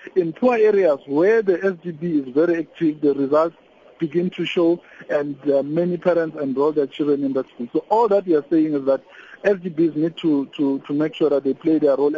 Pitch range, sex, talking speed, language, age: 150-190 Hz, male, 210 wpm, English, 50-69